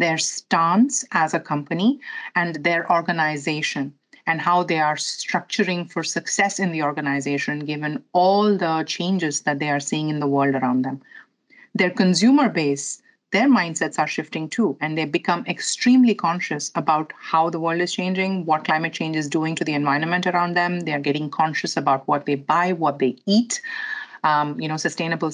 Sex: female